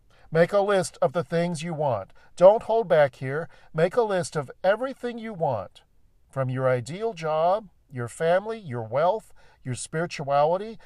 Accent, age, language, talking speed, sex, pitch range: American, 50-69, English, 160 wpm, male, 130-190 Hz